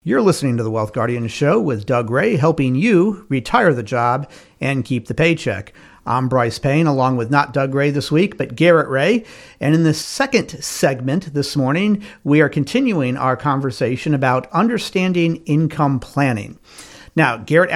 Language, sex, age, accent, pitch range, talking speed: English, male, 50-69, American, 130-180 Hz, 170 wpm